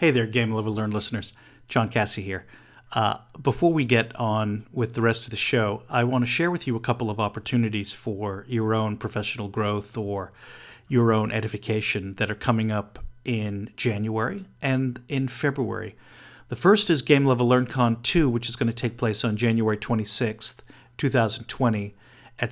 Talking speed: 180 wpm